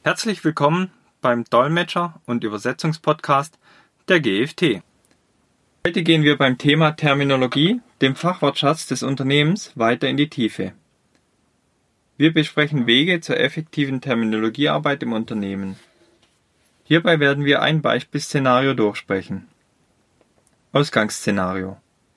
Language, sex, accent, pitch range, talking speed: German, male, German, 120-160 Hz, 100 wpm